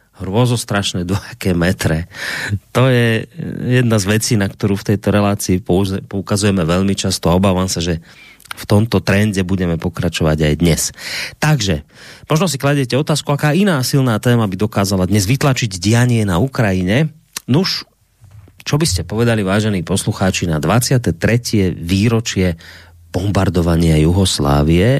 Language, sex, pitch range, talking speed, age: Slovak, male, 90-120 Hz, 135 wpm, 30-49